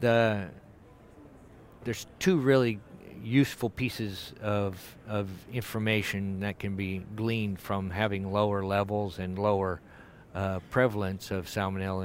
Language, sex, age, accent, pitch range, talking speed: English, male, 50-69, American, 95-110 Hz, 115 wpm